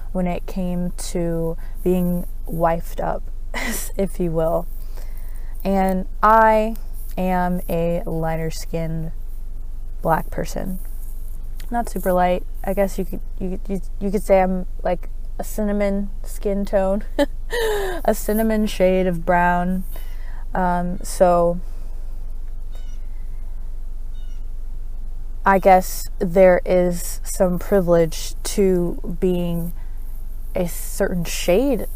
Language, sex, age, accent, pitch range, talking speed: English, female, 20-39, American, 165-190 Hz, 100 wpm